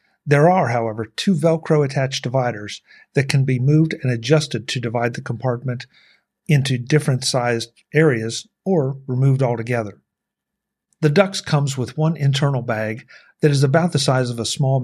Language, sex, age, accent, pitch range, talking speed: English, male, 50-69, American, 120-155 Hz, 155 wpm